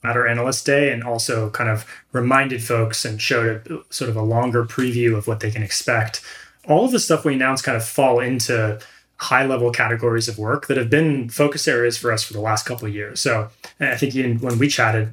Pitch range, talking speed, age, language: 115-135 Hz, 225 wpm, 20-39, English